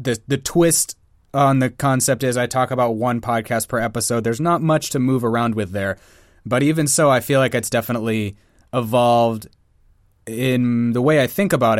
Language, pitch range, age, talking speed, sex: English, 105-130 Hz, 20-39, 190 wpm, male